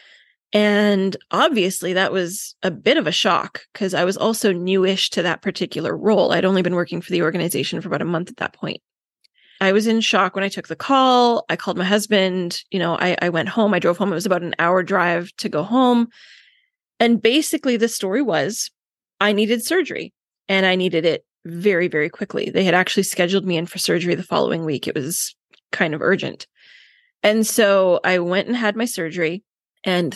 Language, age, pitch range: English, 20-39, 180-225 Hz